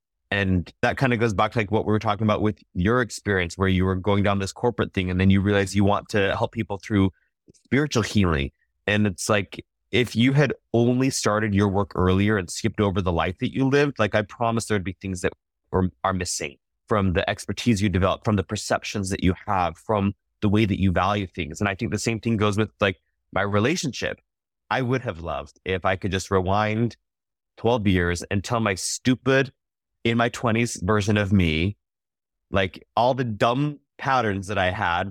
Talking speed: 210 wpm